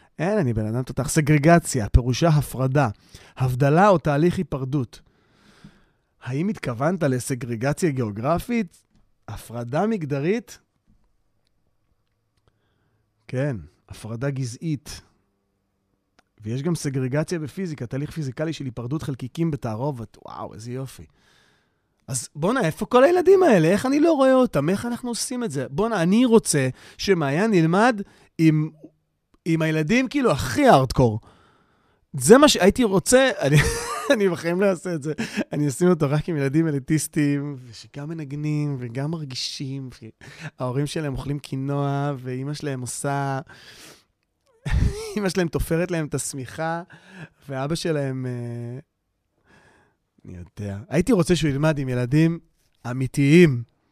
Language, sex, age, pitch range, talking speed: Hebrew, male, 30-49, 125-170 Hz, 120 wpm